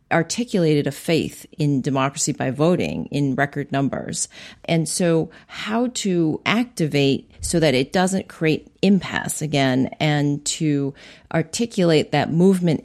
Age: 40-59